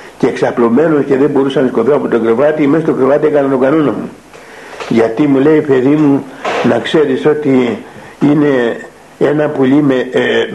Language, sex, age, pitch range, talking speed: Greek, male, 60-79, 130-155 Hz, 170 wpm